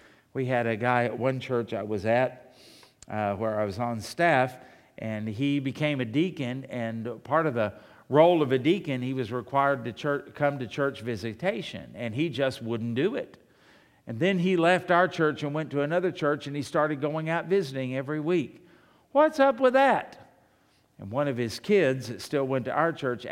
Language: English